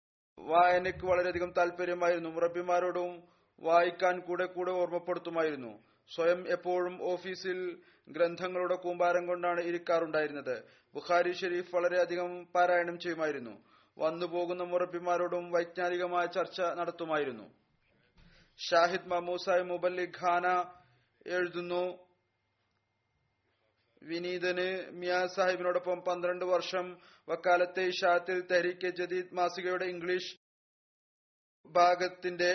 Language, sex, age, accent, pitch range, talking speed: Malayalam, male, 30-49, native, 175-180 Hz, 70 wpm